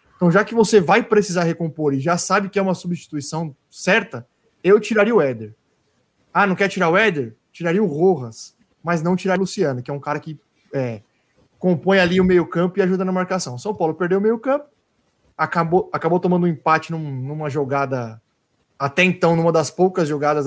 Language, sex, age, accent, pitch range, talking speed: Portuguese, male, 20-39, Brazilian, 145-195 Hz, 195 wpm